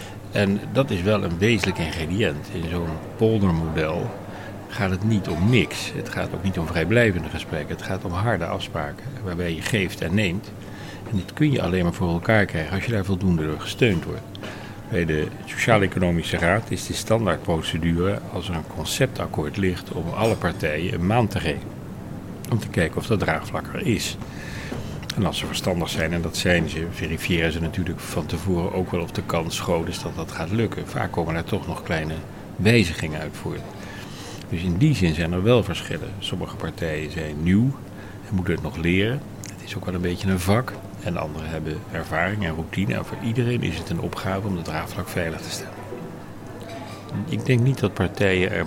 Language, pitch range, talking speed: Dutch, 85-105 Hz, 195 wpm